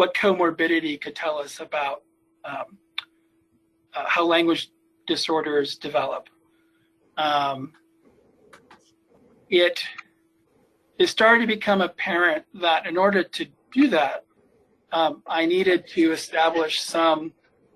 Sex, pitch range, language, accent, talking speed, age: male, 155-235 Hz, English, American, 105 wpm, 40-59